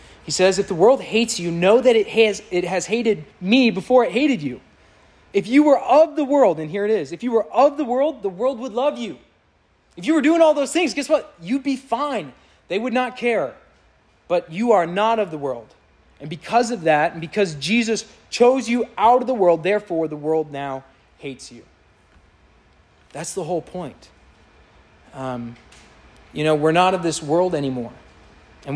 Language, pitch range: English, 145-225 Hz